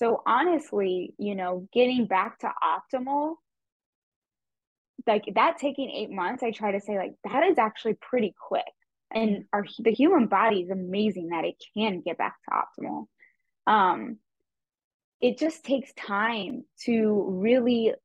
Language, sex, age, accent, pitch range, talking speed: English, female, 10-29, American, 195-255 Hz, 145 wpm